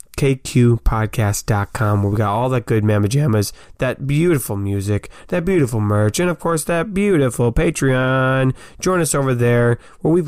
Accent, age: American, 20-39